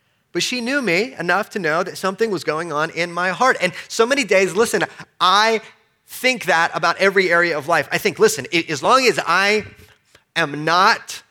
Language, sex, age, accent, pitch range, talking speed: English, male, 30-49, American, 150-195 Hz, 195 wpm